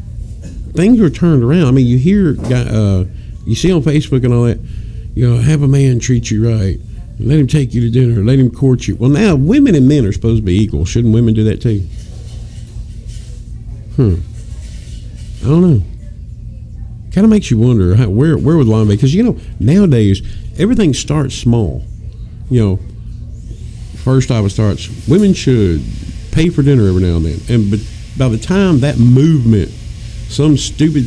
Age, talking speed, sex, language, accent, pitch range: 50-69, 180 wpm, male, English, American, 100-130 Hz